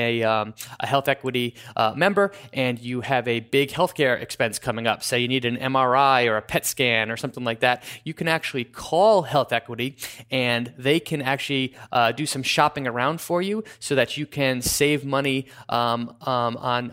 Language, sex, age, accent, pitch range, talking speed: English, male, 20-39, American, 120-145 Hz, 190 wpm